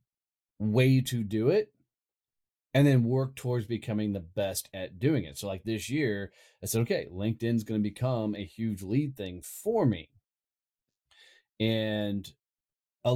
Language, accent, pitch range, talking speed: English, American, 95-115 Hz, 150 wpm